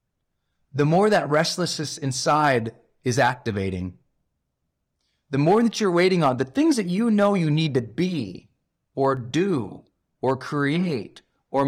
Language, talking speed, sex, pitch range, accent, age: English, 140 wpm, male, 135-180 Hz, American, 30-49